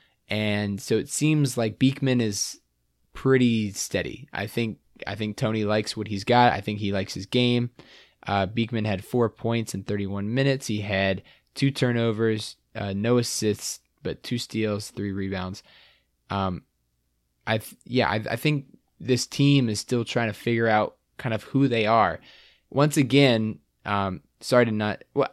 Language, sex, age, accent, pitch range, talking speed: English, male, 20-39, American, 100-125 Hz, 165 wpm